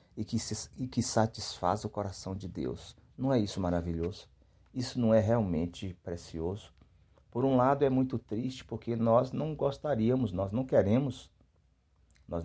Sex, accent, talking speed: male, Brazilian, 160 wpm